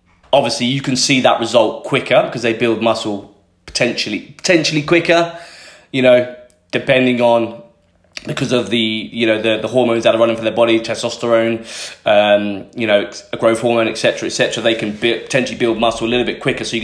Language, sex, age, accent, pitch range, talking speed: English, male, 20-39, British, 110-140 Hz, 195 wpm